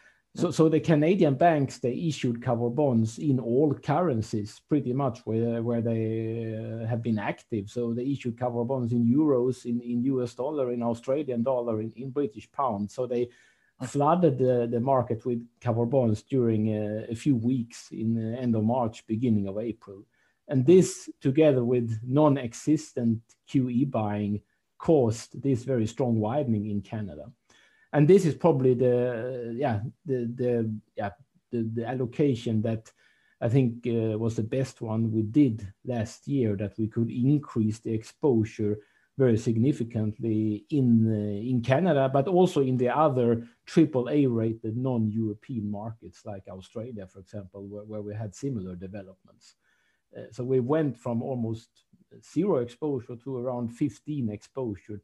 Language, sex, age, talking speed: English, male, 50-69, 155 wpm